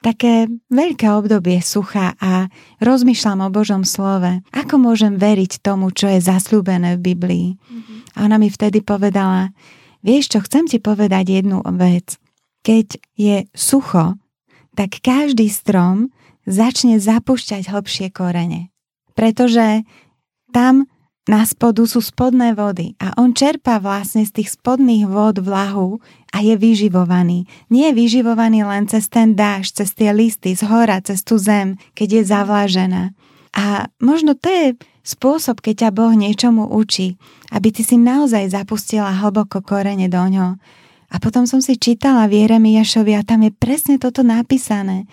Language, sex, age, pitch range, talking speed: Czech, female, 20-39, 195-235 Hz, 145 wpm